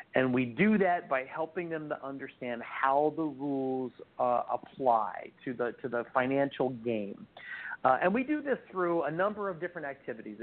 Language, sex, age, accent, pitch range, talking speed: English, male, 50-69, American, 125-160 Hz, 180 wpm